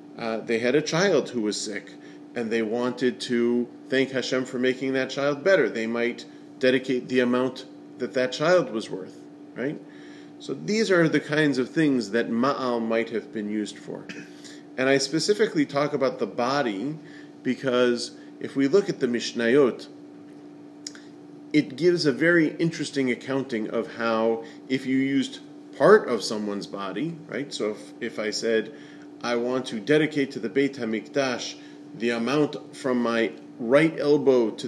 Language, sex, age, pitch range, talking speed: English, male, 40-59, 115-145 Hz, 165 wpm